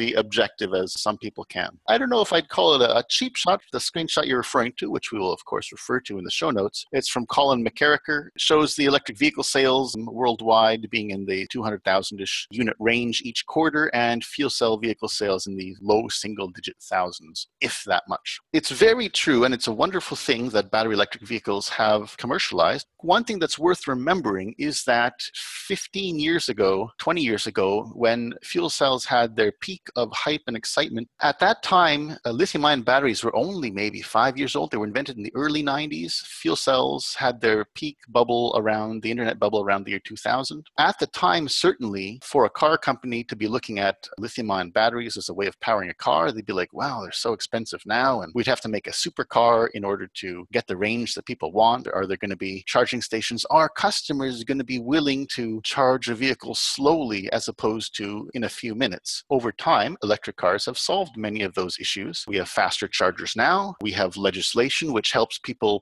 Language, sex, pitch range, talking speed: English, male, 105-140 Hz, 205 wpm